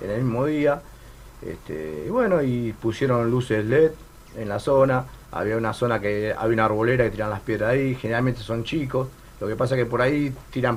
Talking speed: 205 wpm